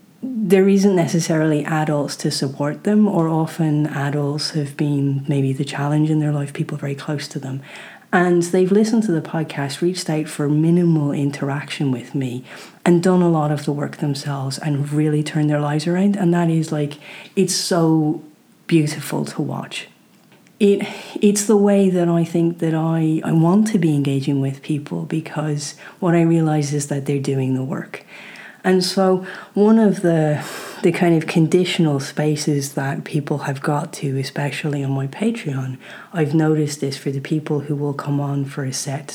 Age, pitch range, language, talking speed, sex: 40-59, 145-175 Hz, English, 180 wpm, female